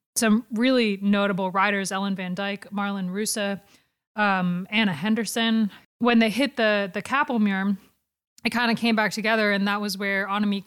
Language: English